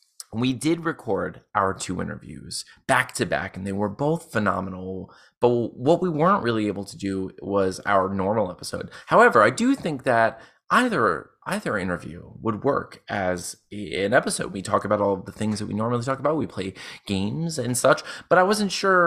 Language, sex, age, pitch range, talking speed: English, male, 30-49, 95-130 Hz, 185 wpm